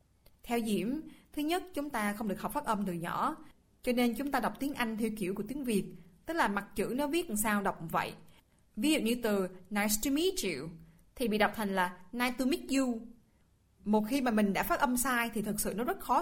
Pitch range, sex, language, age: 190-240 Hz, female, Vietnamese, 20-39